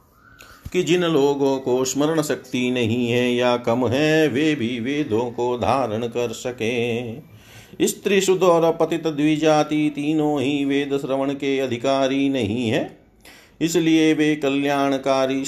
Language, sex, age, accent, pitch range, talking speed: Hindi, male, 50-69, native, 120-150 Hz, 130 wpm